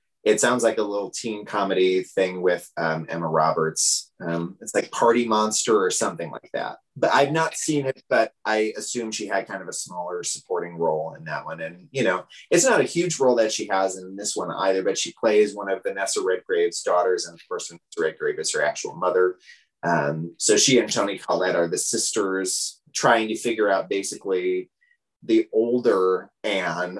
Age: 30-49